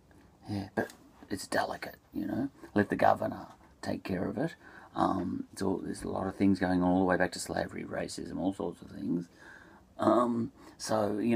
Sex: male